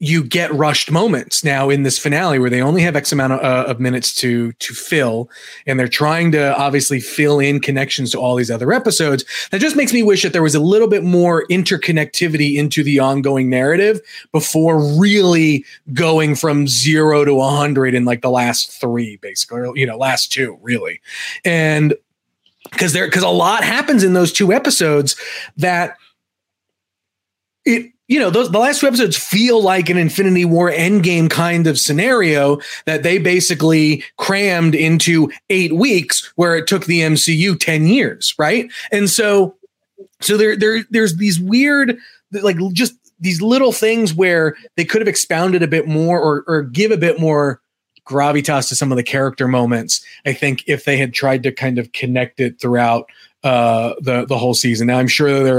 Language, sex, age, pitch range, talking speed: English, male, 30-49, 135-185 Hz, 180 wpm